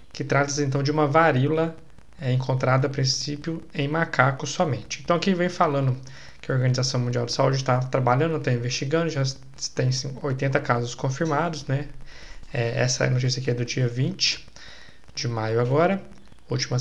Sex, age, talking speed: male, 20-39, 155 wpm